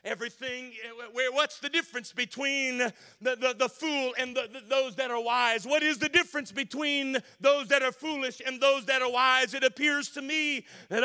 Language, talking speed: English, 180 wpm